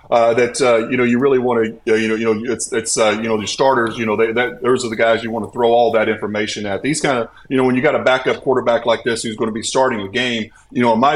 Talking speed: 330 wpm